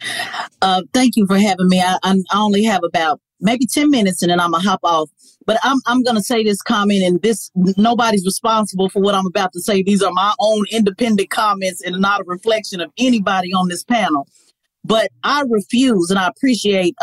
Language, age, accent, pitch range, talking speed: English, 40-59, American, 195-255 Hz, 210 wpm